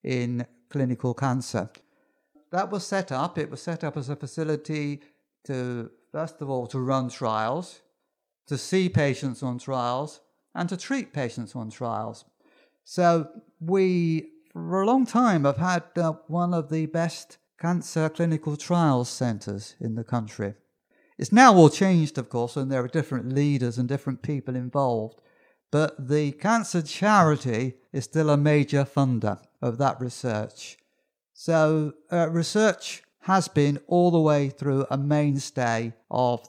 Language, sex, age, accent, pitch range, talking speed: English, male, 50-69, British, 125-160 Hz, 150 wpm